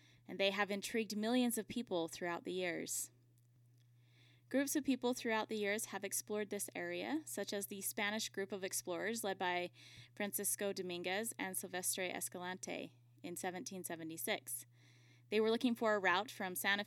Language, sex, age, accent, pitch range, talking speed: English, female, 10-29, American, 165-220 Hz, 155 wpm